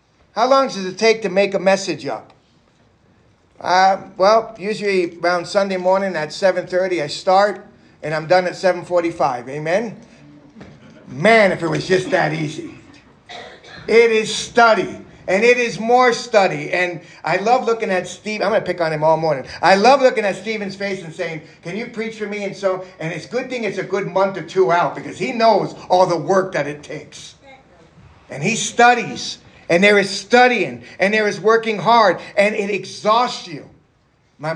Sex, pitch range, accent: male, 175-215 Hz, American